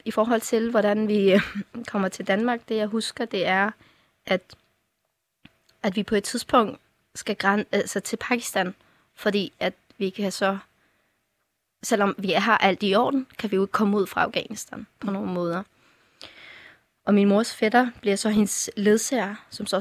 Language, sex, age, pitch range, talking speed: Danish, female, 20-39, 195-220 Hz, 170 wpm